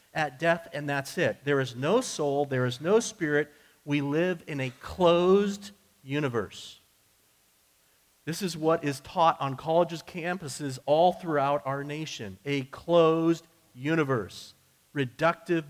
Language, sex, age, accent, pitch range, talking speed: English, male, 40-59, American, 140-170 Hz, 135 wpm